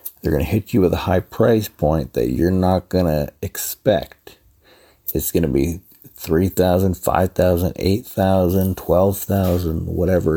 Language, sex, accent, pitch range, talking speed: English, male, American, 85-100 Hz, 145 wpm